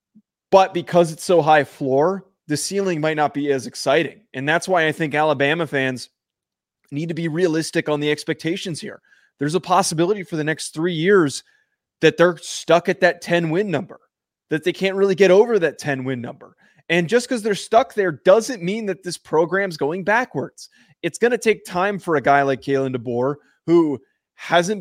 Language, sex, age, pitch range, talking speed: English, male, 20-39, 135-175 Hz, 195 wpm